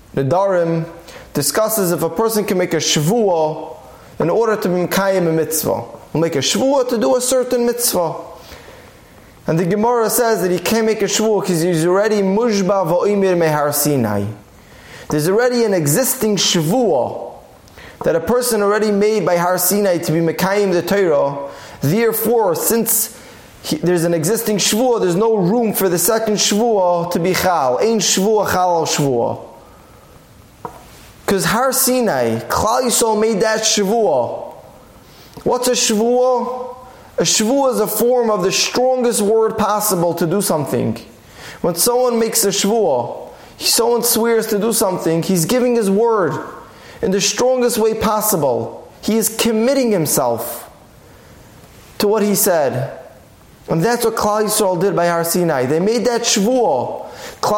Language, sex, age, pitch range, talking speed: English, male, 20-39, 175-230 Hz, 155 wpm